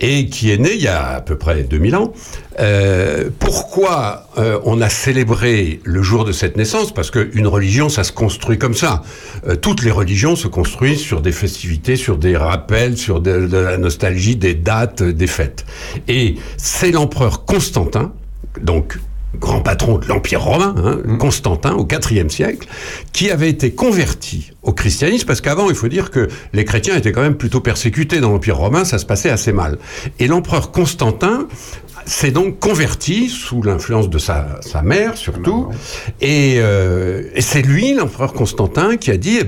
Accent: French